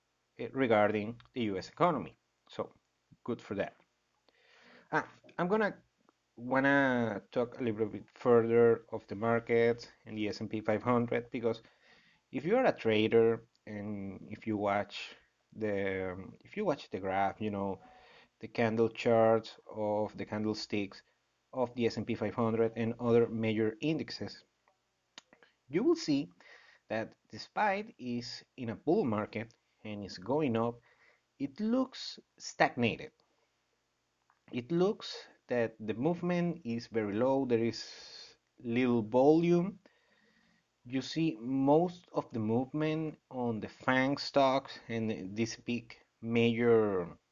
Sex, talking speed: male, 125 wpm